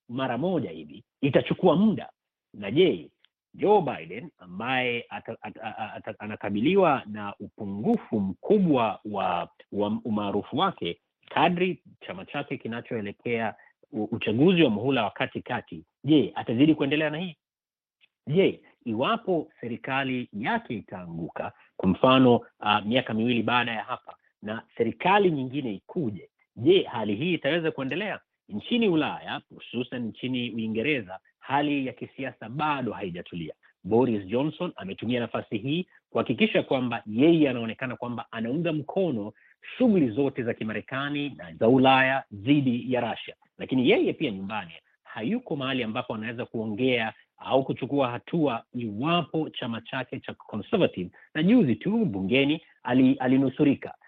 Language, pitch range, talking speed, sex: Swahili, 115-155 Hz, 125 wpm, male